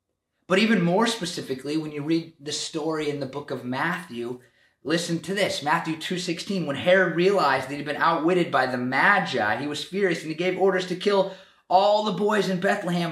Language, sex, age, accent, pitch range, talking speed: English, male, 30-49, American, 145-190 Hz, 200 wpm